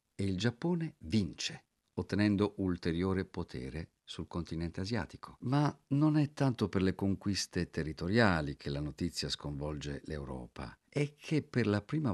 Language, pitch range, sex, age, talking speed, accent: Italian, 80-110 Hz, male, 50-69, 140 wpm, native